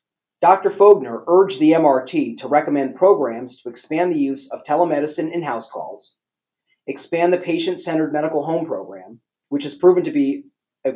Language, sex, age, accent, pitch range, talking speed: English, male, 40-59, American, 130-175 Hz, 155 wpm